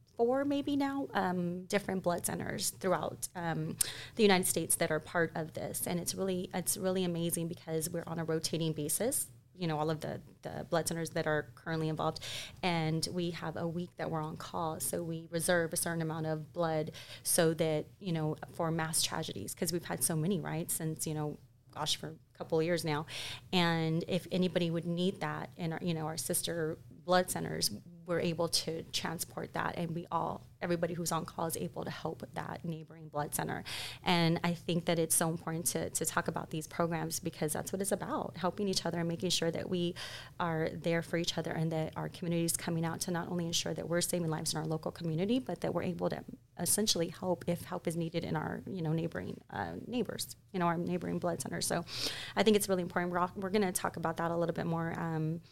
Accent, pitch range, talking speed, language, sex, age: American, 160-175 Hz, 225 wpm, English, female, 30-49